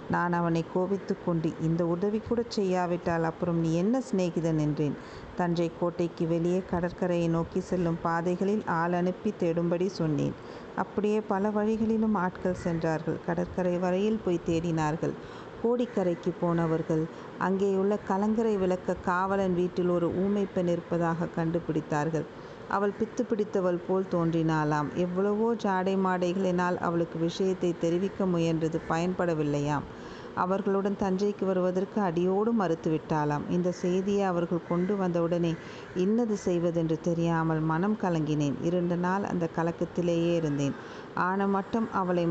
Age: 50-69